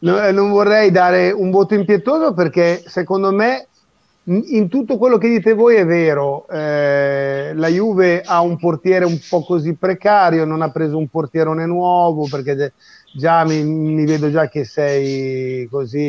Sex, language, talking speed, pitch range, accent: male, Italian, 155 wpm, 145-205 Hz, native